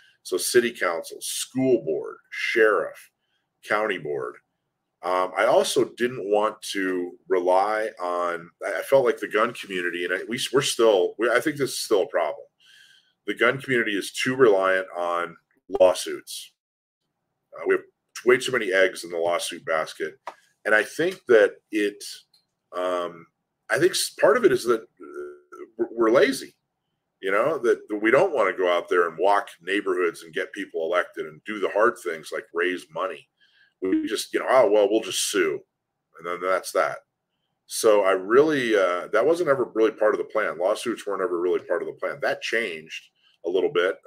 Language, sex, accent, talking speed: English, male, American, 175 wpm